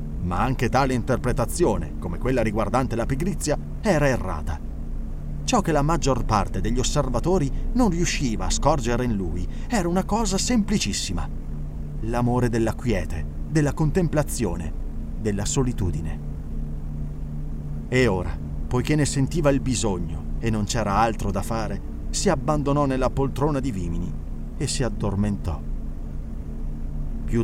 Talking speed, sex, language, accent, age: 125 wpm, male, Italian, native, 30-49